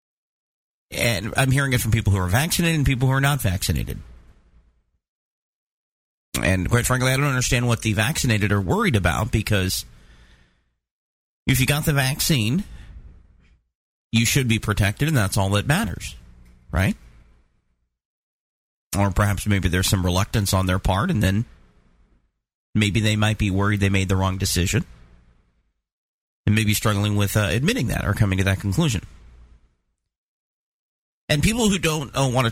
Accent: American